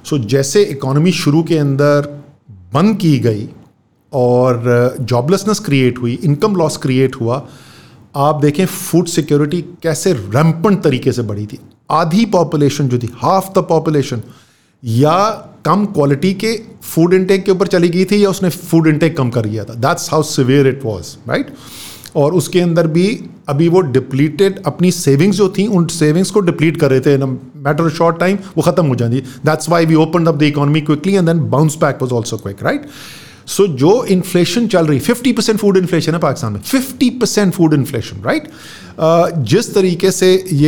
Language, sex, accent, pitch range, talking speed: English, male, Indian, 140-185 Hz, 130 wpm